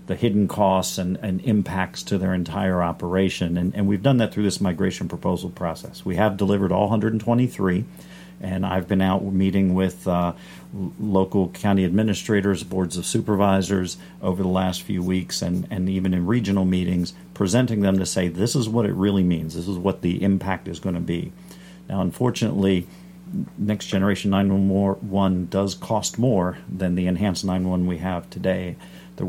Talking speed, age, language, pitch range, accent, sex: 170 wpm, 50-69, English, 90-100 Hz, American, male